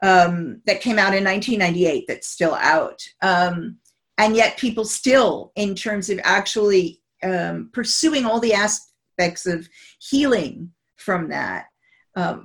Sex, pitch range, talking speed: female, 180-220 Hz, 135 wpm